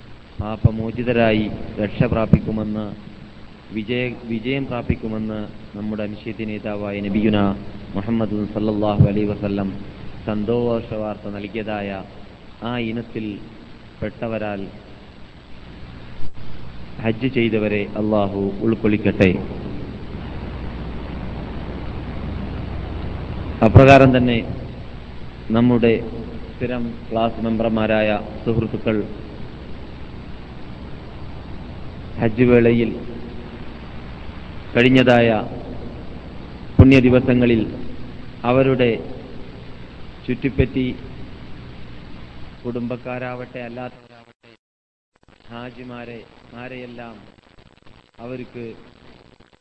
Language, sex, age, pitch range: Malayalam, male, 30-49, 100-125 Hz